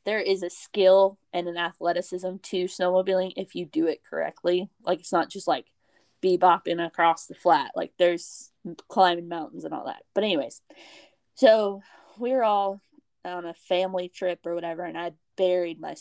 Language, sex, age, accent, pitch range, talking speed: English, female, 20-39, American, 175-210 Hz, 170 wpm